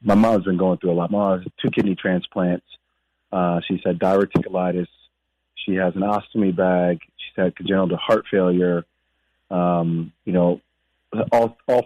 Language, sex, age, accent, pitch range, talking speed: English, male, 30-49, American, 90-110 Hz, 165 wpm